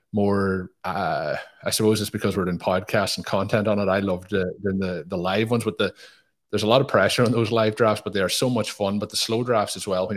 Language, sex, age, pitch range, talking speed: English, male, 20-39, 90-105 Hz, 260 wpm